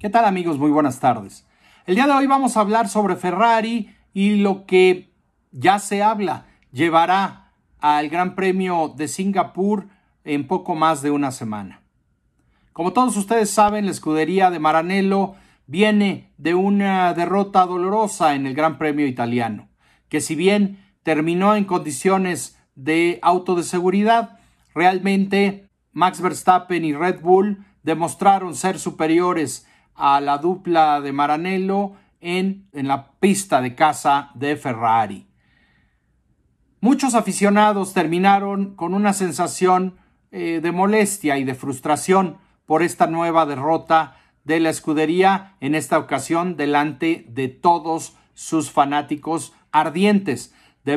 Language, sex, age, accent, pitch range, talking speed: Spanish, male, 50-69, Mexican, 155-195 Hz, 130 wpm